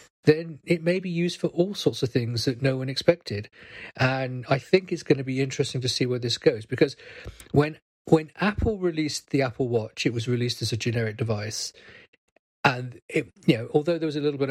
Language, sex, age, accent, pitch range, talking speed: English, male, 40-59, British, 115-155 Hz, 215 wpm